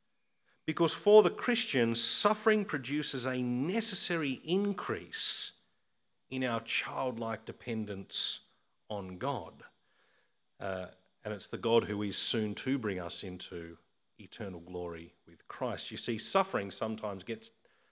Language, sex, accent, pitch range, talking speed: English, male, Australian, 105-160 Hz, 120 wpm